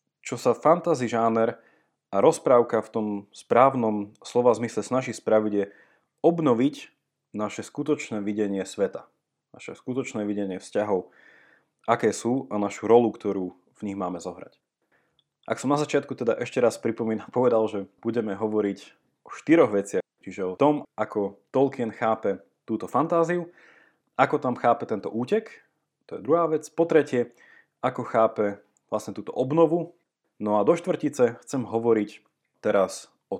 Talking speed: 145 wpm